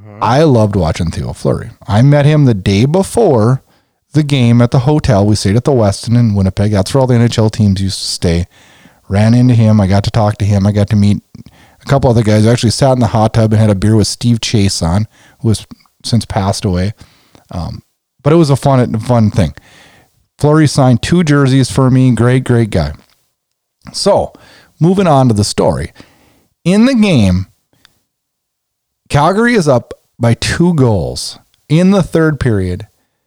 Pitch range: 105-155 Hz